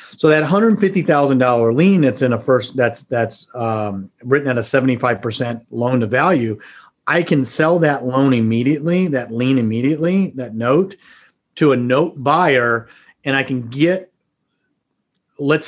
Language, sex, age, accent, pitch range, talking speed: English, male, 40-59, American, 120-155 Hz, 155 wpm